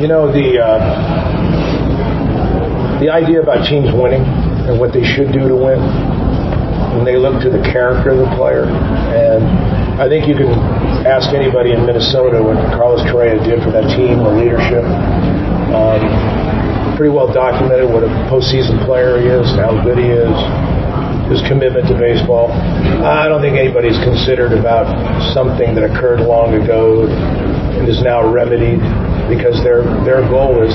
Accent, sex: American, male